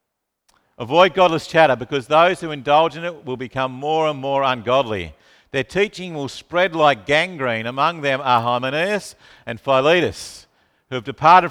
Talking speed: 155 wpm